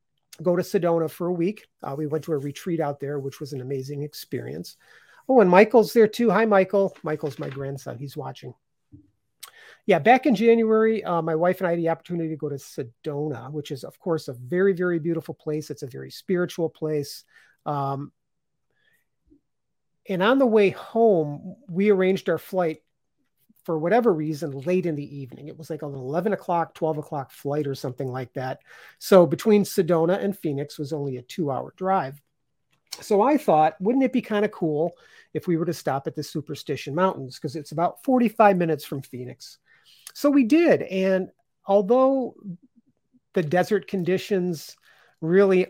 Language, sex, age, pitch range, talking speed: English, male, 40-59, 145-195 Hz, 180 wpm